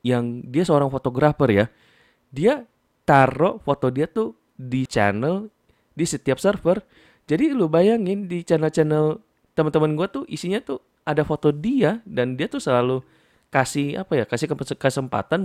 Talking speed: 145 wpm